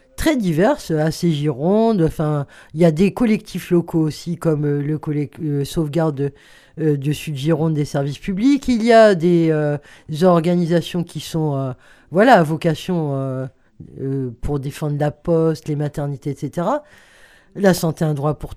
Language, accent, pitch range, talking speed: French, French, 155-215 Hz, 170 wpm